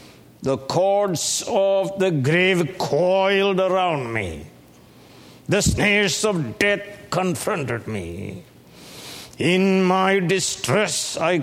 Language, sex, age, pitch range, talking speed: English, male, 60-79, 145-200 Hz, 95 wpm